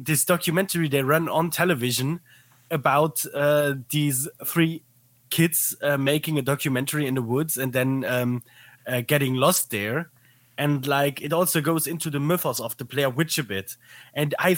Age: 20-39